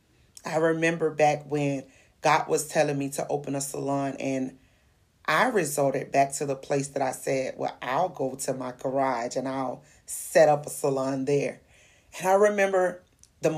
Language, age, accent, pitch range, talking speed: English, 30-49, American, 130-160 Hz, 170 wpm